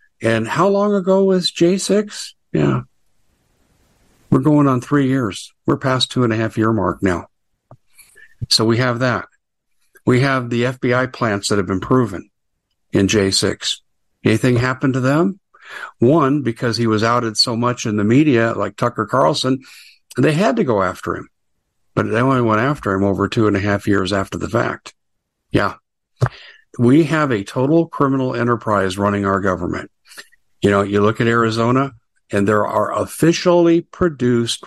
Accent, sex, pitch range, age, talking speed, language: American, male, 100-130 Hz, 60-79, 165 wpm, English